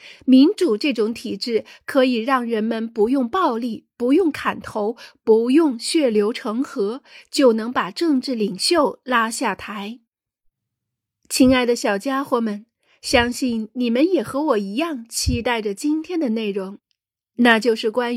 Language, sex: Chinese, female